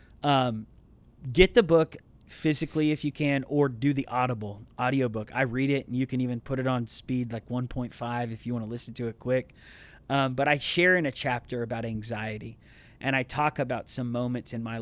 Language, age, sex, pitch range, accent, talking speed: English, 30-49, male, 115-140 Hz, American, 205 wpm